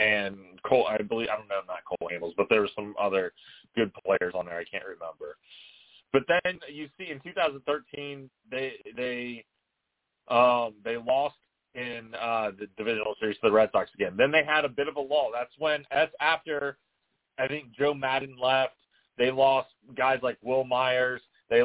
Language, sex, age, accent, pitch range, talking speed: English, male, 30-49, American, 115-140 Hz, 185 wpm